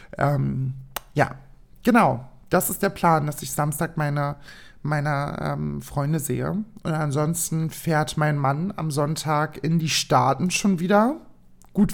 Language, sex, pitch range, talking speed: German, male, 150-195 Hz, 140 wpm